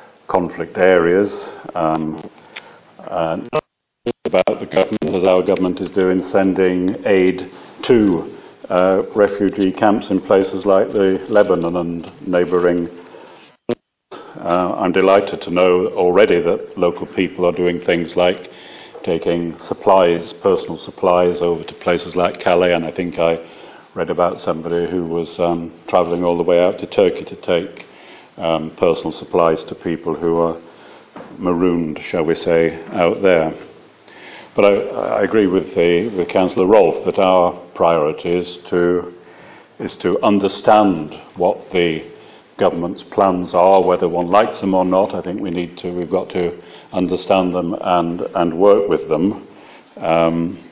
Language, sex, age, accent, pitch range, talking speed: English, male, 50-69, British, 85-95 Hz, 140 wpm